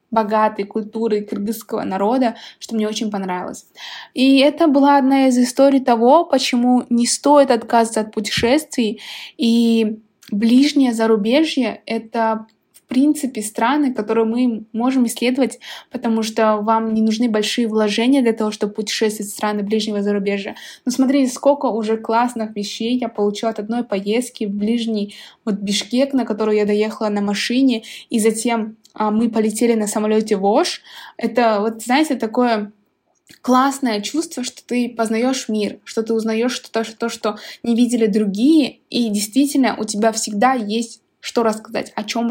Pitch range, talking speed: 215-250 Hz, 145 wpm